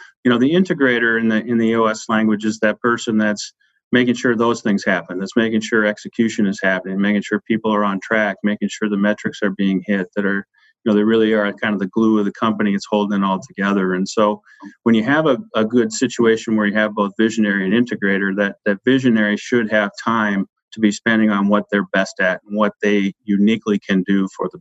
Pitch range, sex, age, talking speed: 100-110 Hz, male, 40-59, 230 wpm